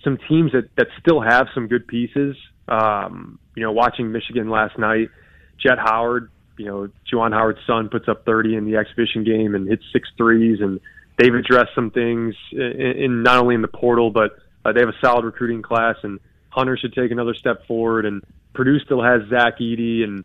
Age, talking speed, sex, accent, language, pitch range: 20-39, 200 wpm, male, American, English, 110-130 Hz